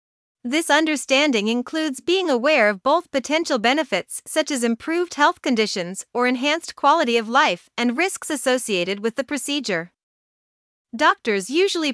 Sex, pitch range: female, 230-305 Hz